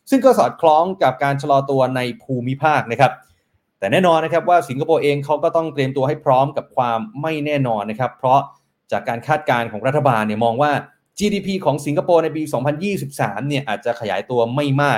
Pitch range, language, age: 125-160 Hz, Thai, 20-39